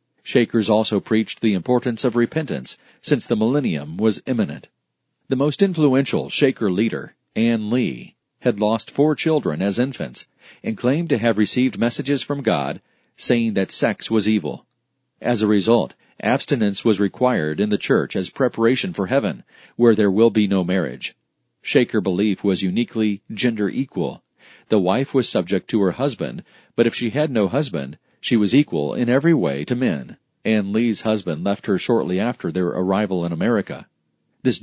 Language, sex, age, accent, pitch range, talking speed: English, male, 40-59, American, 100-125 Hz, 165 wpm